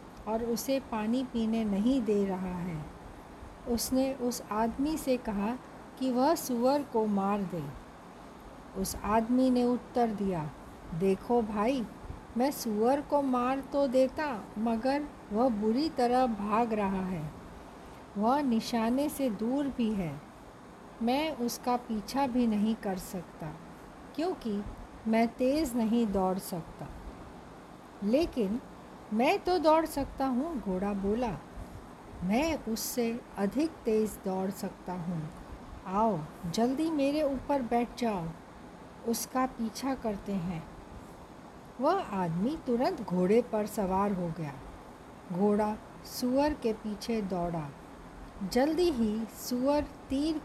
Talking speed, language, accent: 120 wpm, Hindi, native